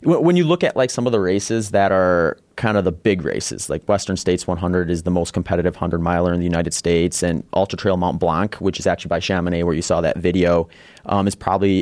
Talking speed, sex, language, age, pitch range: 245 wpm, male, English, 30-49, 85-100 Hz